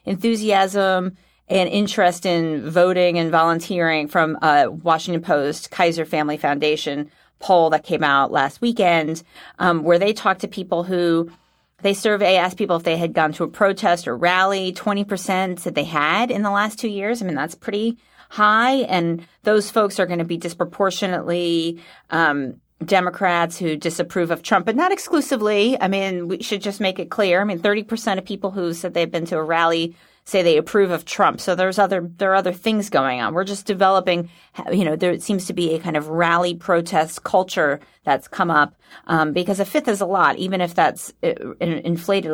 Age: 30-49